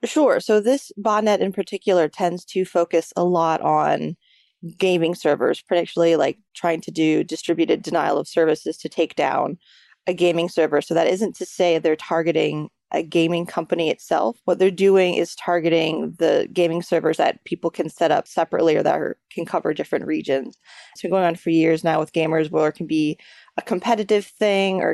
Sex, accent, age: female, American, 20-39